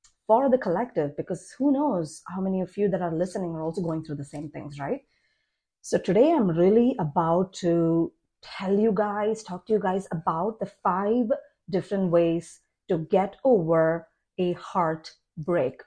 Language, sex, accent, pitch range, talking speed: English, female, Indian, 170-220 Hz, 165 wpm